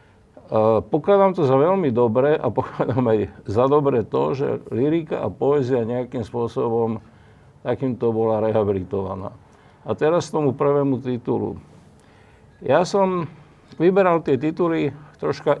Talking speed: 120 wpm